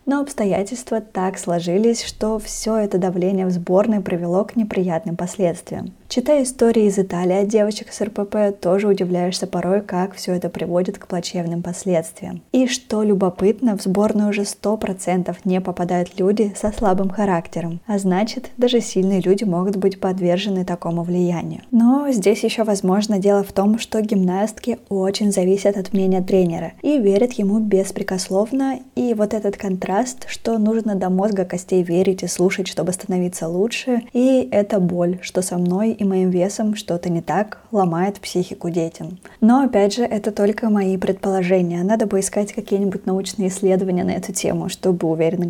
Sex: female